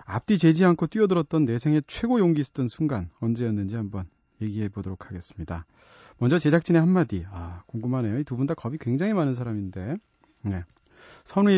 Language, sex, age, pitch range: Korean, male, 40-59, 115-170 Hz